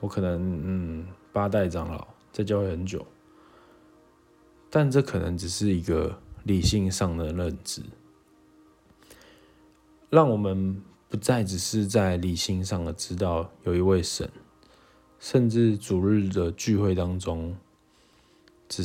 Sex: male